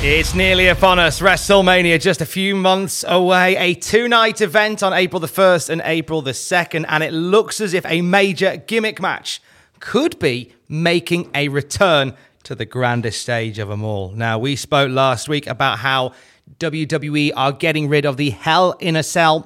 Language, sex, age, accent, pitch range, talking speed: English, male, 30-49, British, 130-180 Hz, 180 wpm